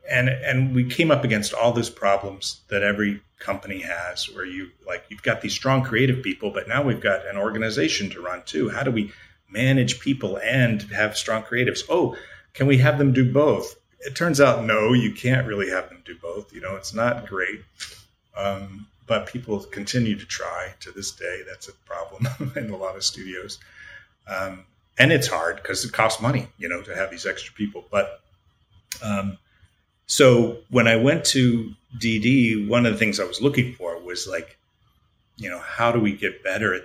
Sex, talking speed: male, 195 wpm